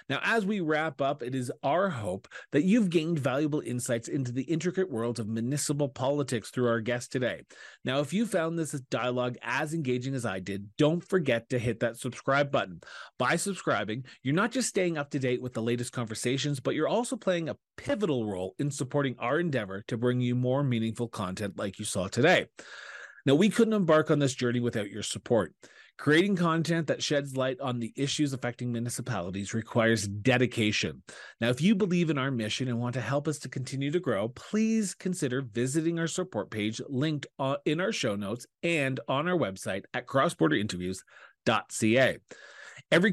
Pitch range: 120-155 Hz